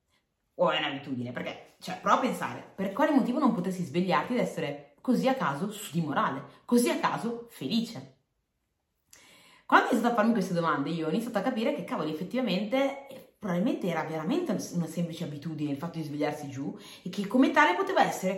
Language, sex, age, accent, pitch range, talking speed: Italian, female, 30-49, native, 160-220 Hz, 185 wpm